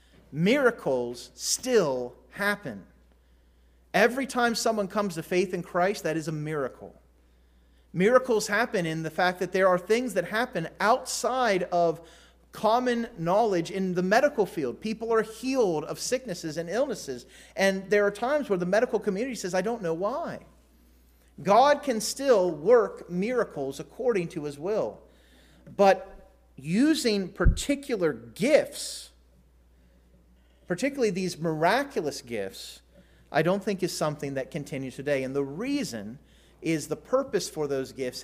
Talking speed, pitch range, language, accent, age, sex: 140 wpm, 130-195 Hz, English, American, 30-49, male